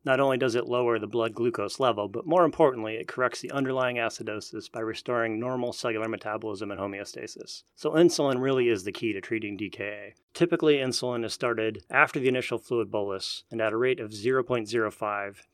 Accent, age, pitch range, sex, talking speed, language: American, 30-49, 110-130 Hz, male, 185 wpm, English